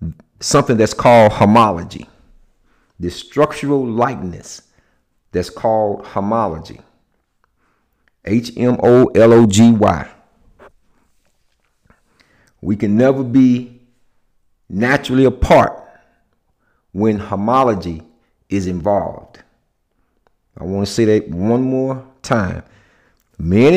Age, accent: 50-69, American